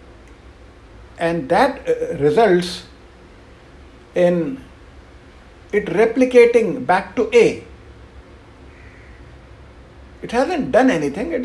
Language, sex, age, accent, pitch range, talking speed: English, male, 60-79, Indian, 145-205 Hz, 75 wpm